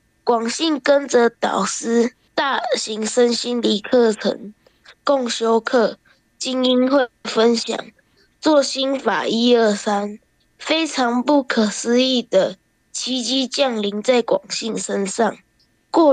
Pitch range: 220-265 Hz